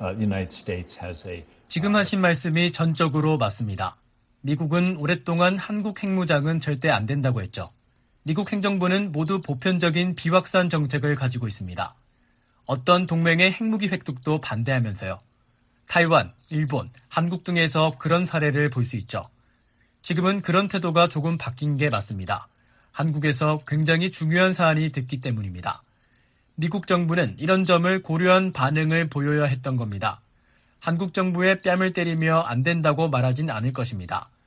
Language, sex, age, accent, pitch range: Korean, male, 40-59, native, 125-180 Hz